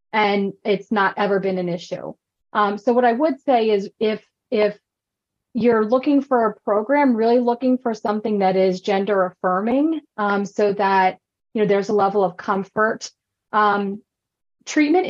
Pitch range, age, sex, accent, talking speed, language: 200-240 Hz, 30-49, female, American, 165 wpm, English